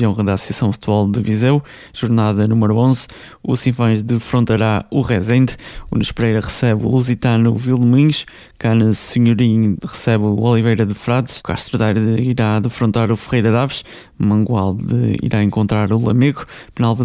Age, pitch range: 20-39, 110-125 Hz